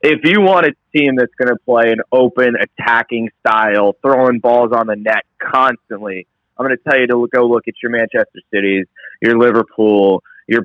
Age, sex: 20-39, male